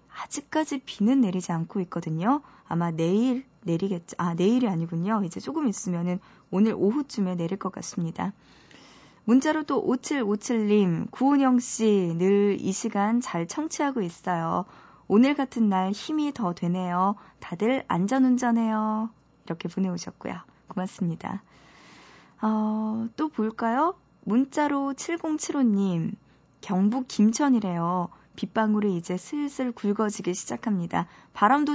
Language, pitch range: Korean, 185-245 Hz